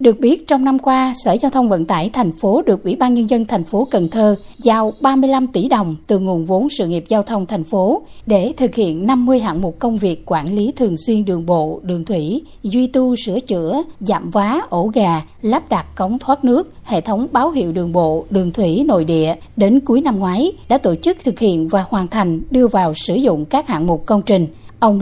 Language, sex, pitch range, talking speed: Vietnamese, female, 195-260 Hz, 230 wpm